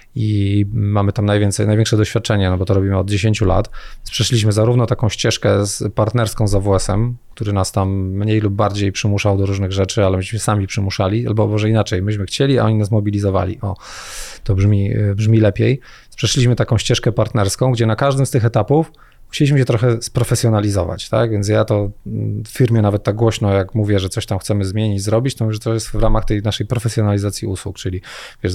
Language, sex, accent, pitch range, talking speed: Polish, male, native, 100-115 Hz, 195 wpm